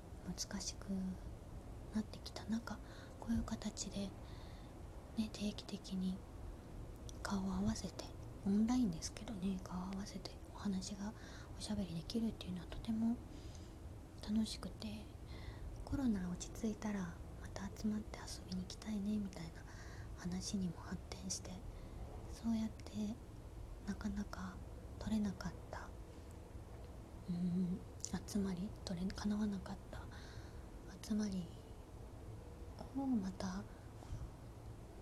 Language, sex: Japanese, female